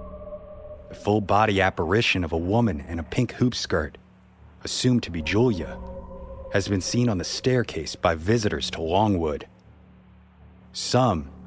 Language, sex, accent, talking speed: English, male, American, 135 wpm